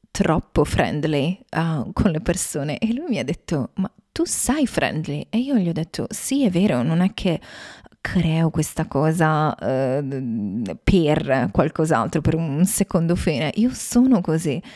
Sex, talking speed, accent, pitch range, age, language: female, 160 wpm, native, 160-200 Hz, 20-39, Italian